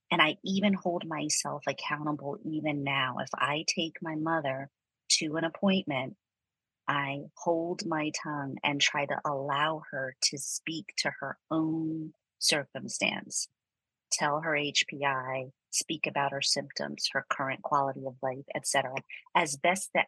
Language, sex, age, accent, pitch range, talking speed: English, female, 30-49, American, 140-170 Hz, 140 wpm